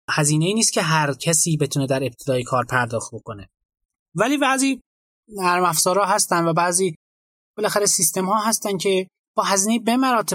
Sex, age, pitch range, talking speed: male, 20-39, 145-200 Hz, 160 wpm